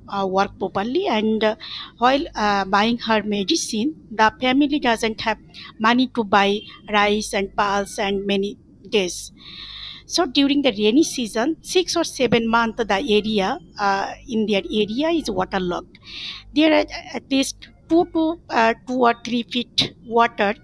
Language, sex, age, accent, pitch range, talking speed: English, female, 60-79, Indian, 210-270 Hz, 150 wpm